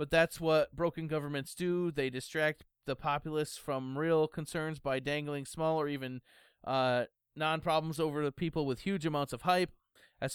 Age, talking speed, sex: 30-49, 170 wpm, male